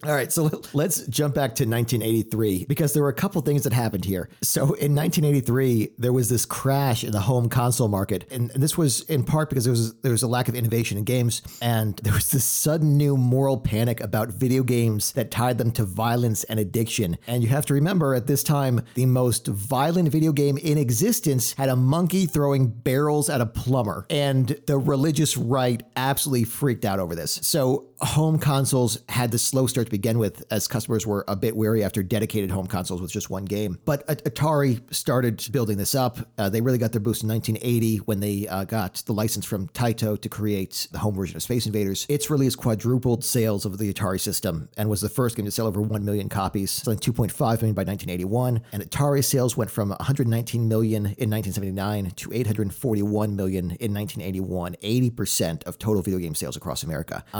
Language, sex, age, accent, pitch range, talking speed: English, male, 40-59, American, 105-135 Hz, 205 wpm